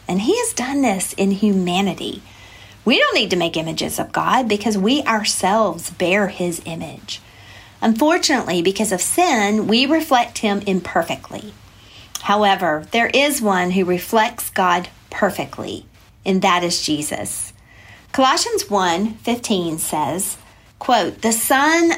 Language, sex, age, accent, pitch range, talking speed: English, female, 50-69, American, 165-230 Hz, 130 wpm